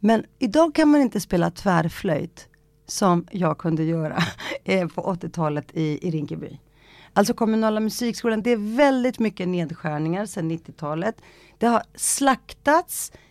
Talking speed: 130 wpm